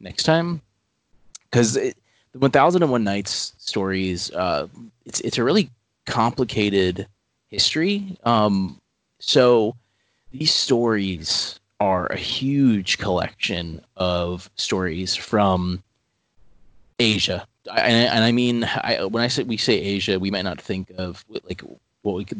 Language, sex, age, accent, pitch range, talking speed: English, male, 20-39, American, 95-120 Hz, 135 wpm